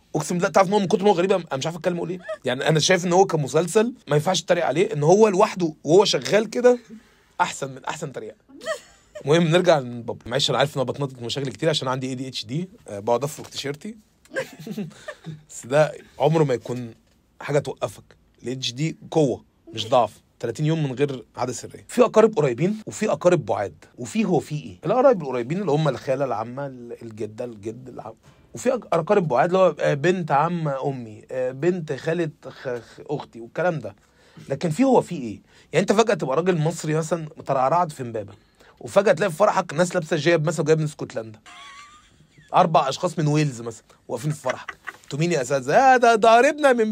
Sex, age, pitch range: male, 30-49, 140-220 Hz